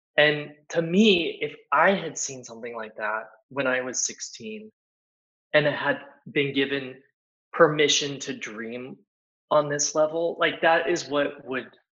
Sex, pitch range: male, 125-155 Hz